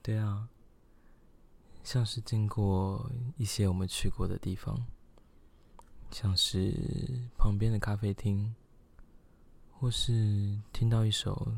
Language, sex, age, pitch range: Chinese, male, 20-39, 95-115 Hz